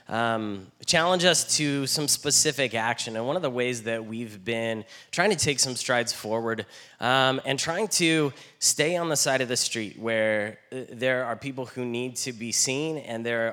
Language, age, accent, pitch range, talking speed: English, 10-29, American, 115-145 Hz, 190 wpm